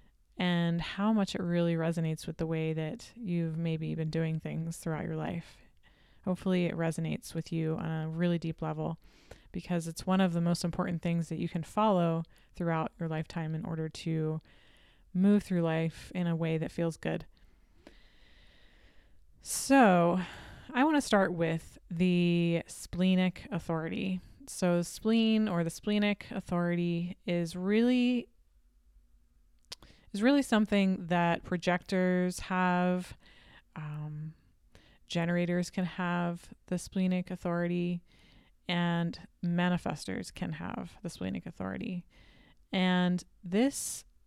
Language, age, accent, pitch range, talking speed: English, 20-39, American, 165-185 Hz, 125 wpm